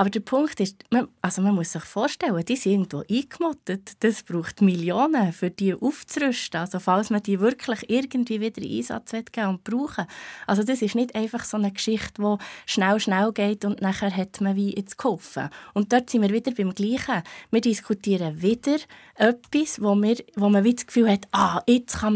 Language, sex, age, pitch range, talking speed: German, female, 20-39, 195-240 Hz, 195 wpm